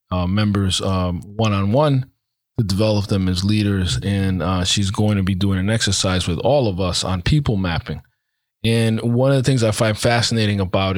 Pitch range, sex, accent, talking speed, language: 95-110 Hz, male, American, 195 wpm, English